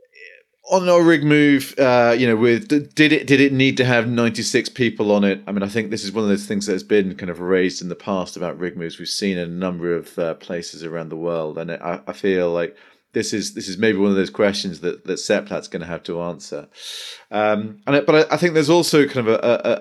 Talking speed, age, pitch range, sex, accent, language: 270 wpm, 40-59, 95-130 Hz, male, British, English